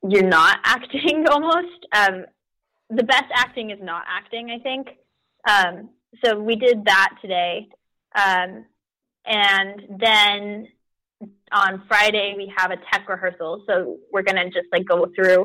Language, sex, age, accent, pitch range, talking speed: English, female, 20-39, American, 185-230 Hz, 145 wpm